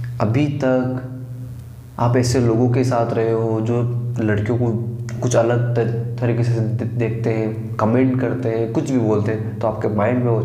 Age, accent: 20-39, native